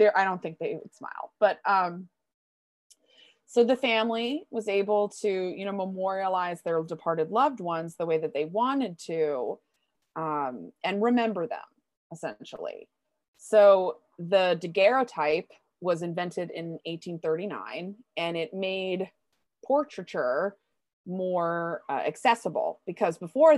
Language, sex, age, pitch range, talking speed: English, female, 20-39, 170-215 Hz, 120 wpm